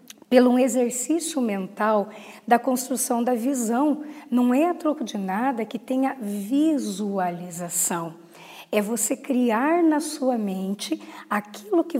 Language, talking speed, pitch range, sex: Portuguese, 125 wpm, 210-275 Hz, female